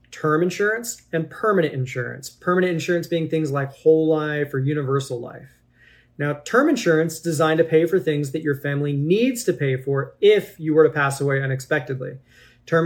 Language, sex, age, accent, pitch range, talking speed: English, male, 30-49, American, 140-175 Hz, 180 wpm